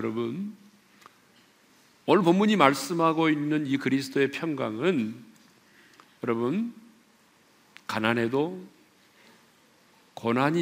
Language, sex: Korean, male